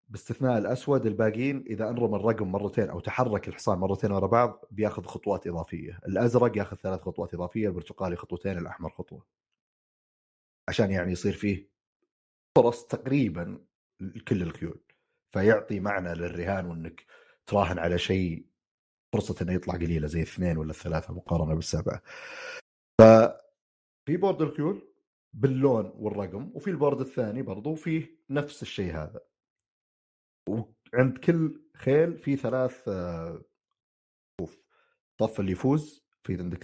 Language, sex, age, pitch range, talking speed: Arabic, male, 30-49, 90-120 Hz, 120 wpm